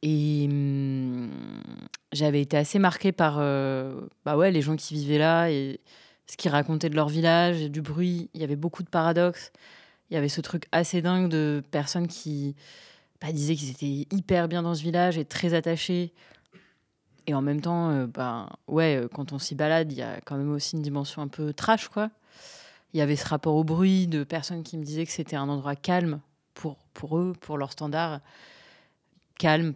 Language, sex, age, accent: French, female, 20-39, French